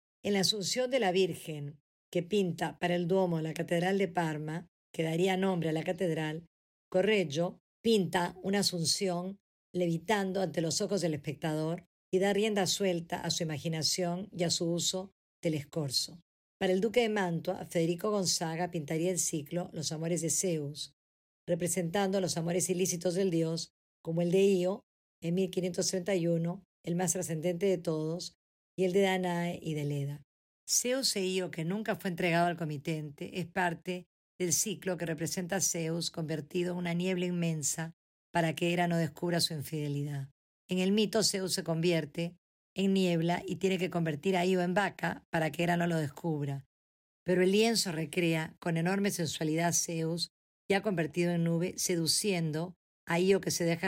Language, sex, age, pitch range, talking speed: Spanish, female, 50-69, 165-185 Hz, 170 wpm